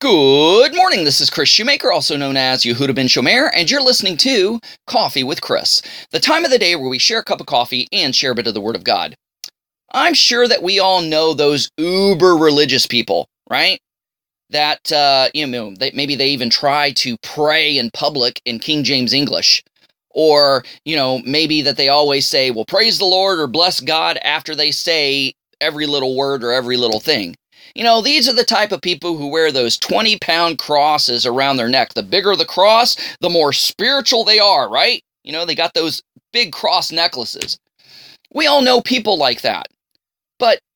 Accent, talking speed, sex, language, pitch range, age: American, 195 wpm, male, English, 145-225 Hz, 30-49